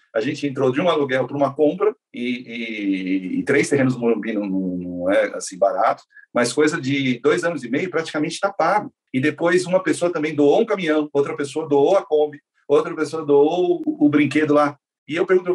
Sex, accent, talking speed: male, Brazilian, 210 wpm